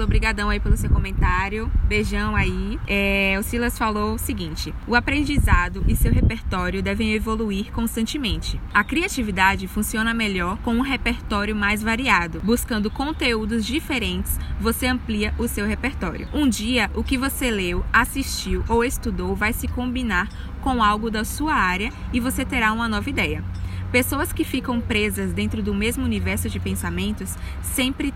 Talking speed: 150 wpm